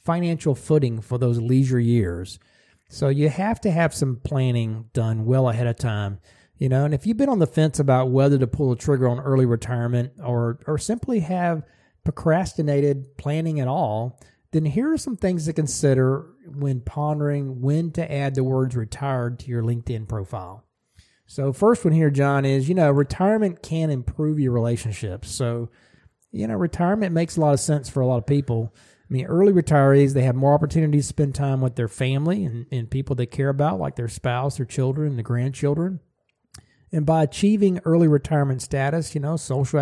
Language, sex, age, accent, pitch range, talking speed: English, male, 40-59, American, 120-150 Hz, 190 wpm